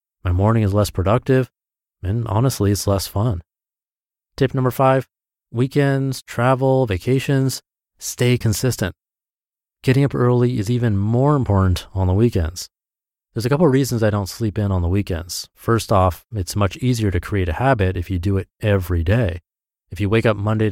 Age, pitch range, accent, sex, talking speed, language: 30-49, 95-125 Hz, American, male, 175 wpm, English